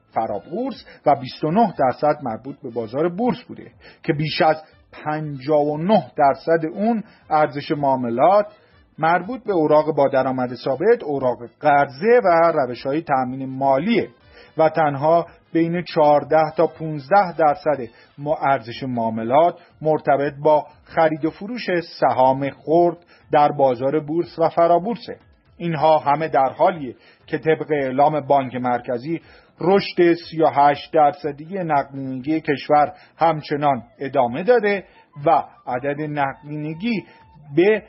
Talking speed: 115 wpm